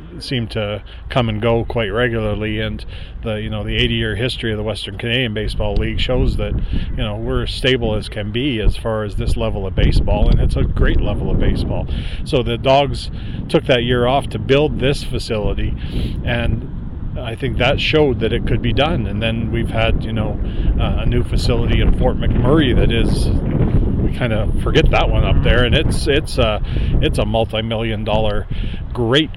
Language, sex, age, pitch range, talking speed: English, male, 40-59, 105-120 Hz, 195 wpm